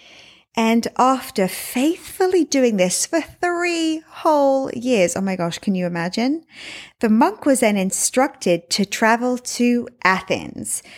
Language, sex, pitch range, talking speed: English, female, 190-300 Hz, 130 wpm